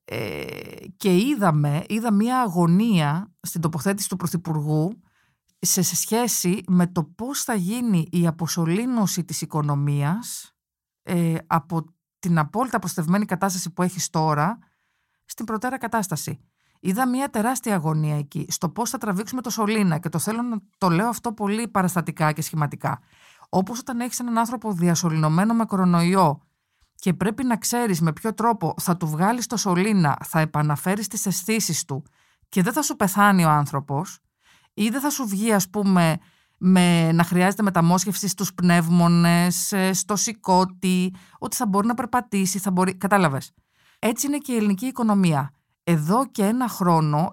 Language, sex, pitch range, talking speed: Greek, female, 165-215 Hz, 155 wpm